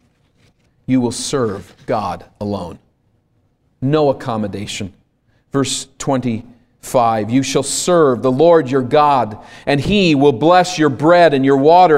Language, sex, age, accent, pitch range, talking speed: English, male, 40-59, American, 125-160 Hz, 125 wpm